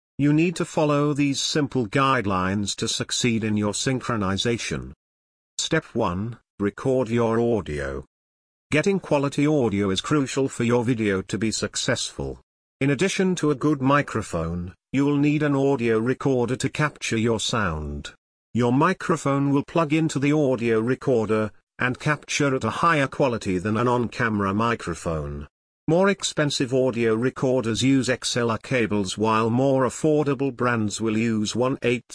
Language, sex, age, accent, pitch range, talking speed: English, male, 50-69, British, 105-140 Hz, 140 wpm